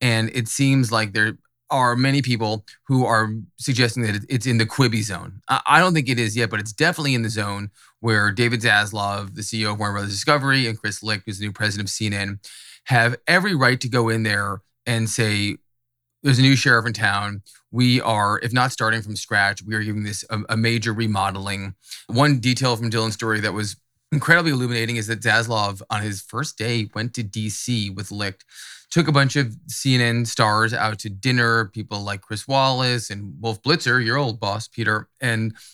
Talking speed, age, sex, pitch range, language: 200 wpm, 20-39, male, 105-125 Hz, English